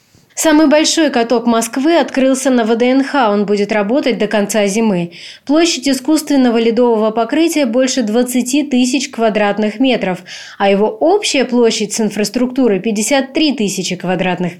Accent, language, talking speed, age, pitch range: native, Russian, 125 wpm, 20-39, 205-255 Hz